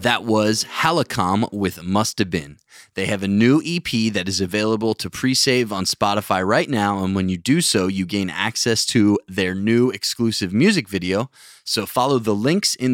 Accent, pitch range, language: American, 95-120 Hz, English